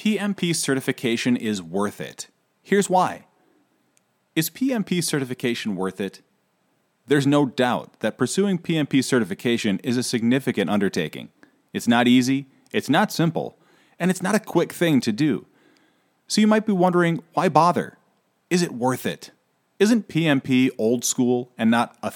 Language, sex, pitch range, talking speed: English, male, 120-180 Hz, 150 wpm